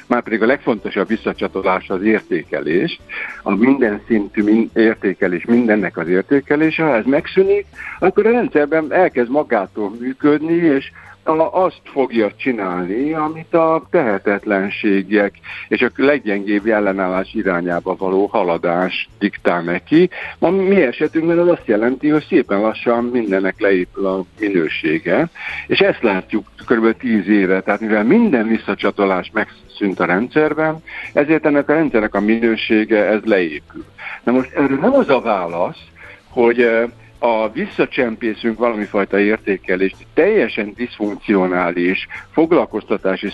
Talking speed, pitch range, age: 125 wpm, 95-140 Hz, 60-79